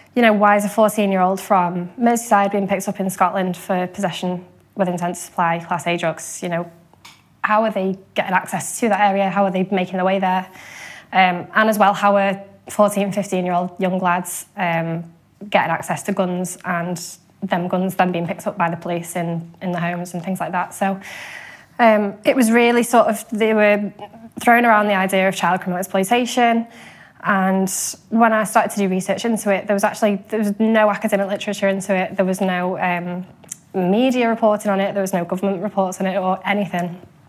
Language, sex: English, female